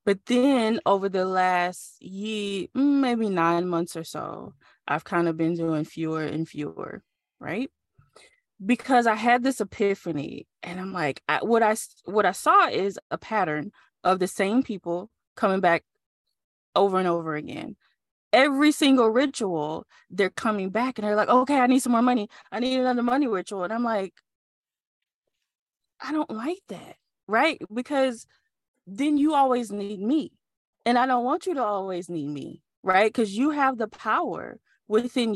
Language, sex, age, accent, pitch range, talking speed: English, female, 20-39, American, 170-250 Hz, 165 wpm